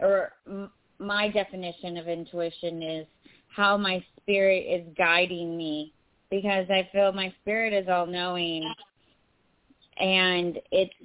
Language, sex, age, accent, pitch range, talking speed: English, female, 30-49, American, 155-180 Hz, 120 wpm